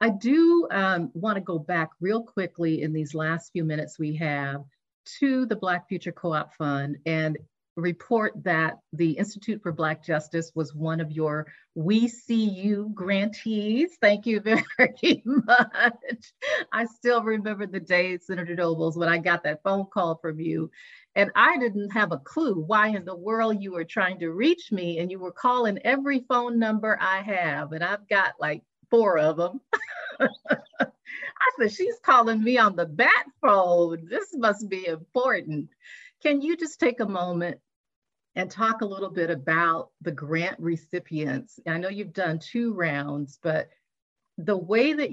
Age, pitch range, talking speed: 50-69, 165-220 Hz, 170 wpm